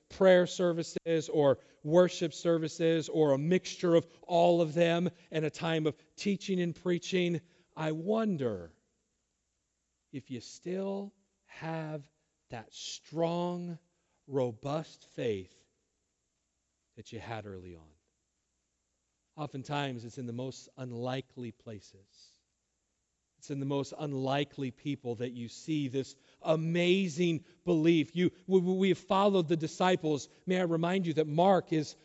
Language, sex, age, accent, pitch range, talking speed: English, male, 40-59, American, 140-185 Hz, 125 wpm